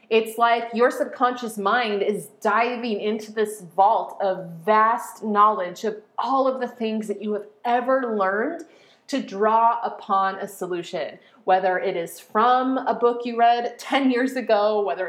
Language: English